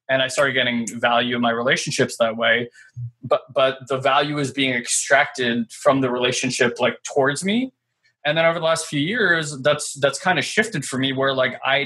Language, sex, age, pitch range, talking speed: English, male, 20-39, 125-155 Hz, 200 wpm